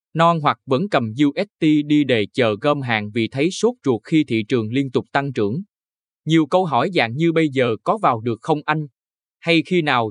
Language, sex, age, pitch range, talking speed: Vietnamese, male, 20-39, 115-155 Hz, 215 wpm